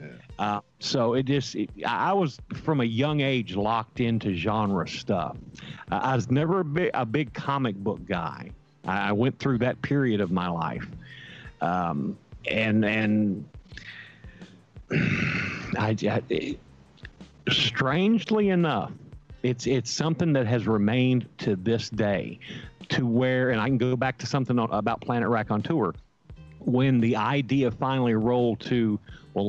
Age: 50-69